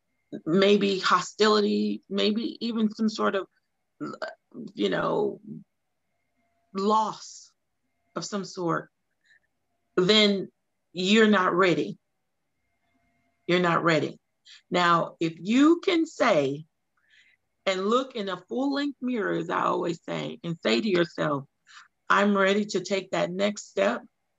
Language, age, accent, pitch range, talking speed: English, 40-59, American, 175-215 Hz, 115 wpm